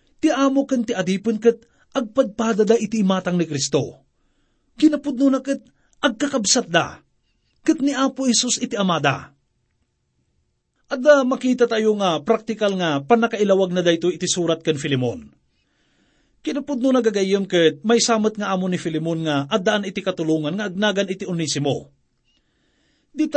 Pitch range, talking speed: 175-255 Hz, 135 wpm